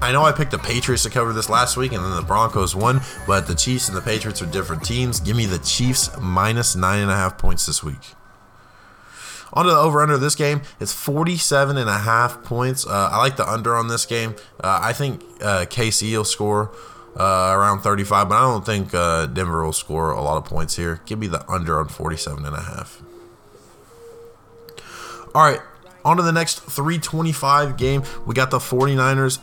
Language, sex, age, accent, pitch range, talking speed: English, male, 20-39, American, 95-125 Hz, 210 wpm